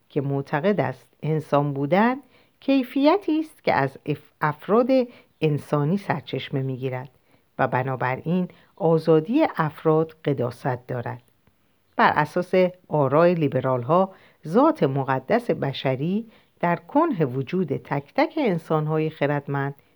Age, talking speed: 50-69, 110 wpm